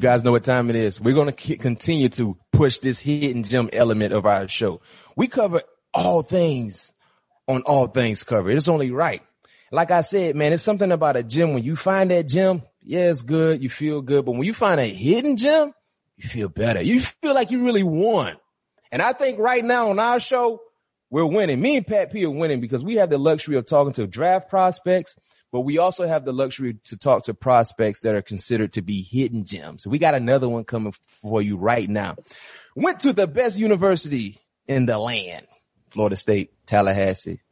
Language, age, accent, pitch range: English, 30-49, American, 120-170 Hz